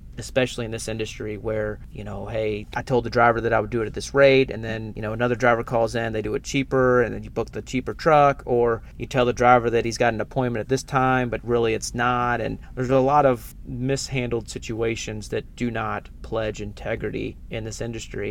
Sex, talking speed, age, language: male, 235 wpm, 30-49, English